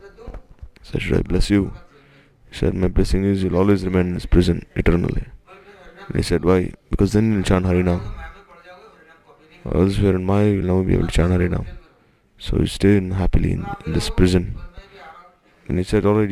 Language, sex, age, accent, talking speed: English, male, 20-39, Indian, 195 wpm